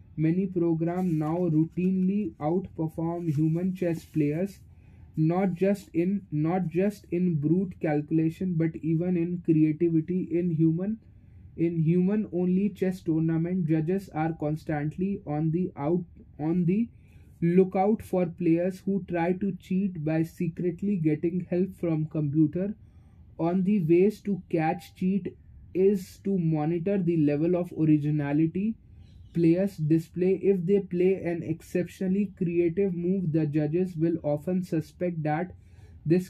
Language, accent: English, Indian